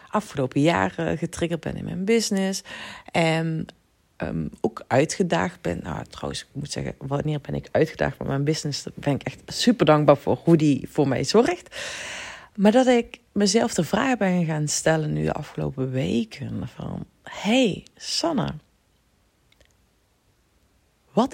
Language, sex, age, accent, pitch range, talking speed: Dutch, female, 30-49, Dutch, 130-215 Hz, 145 wpm